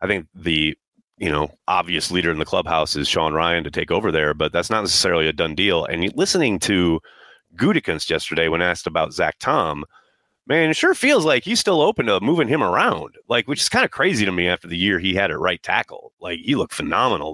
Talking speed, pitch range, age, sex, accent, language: 230 wpm, 85-120 Hz, 30-49, male, American, English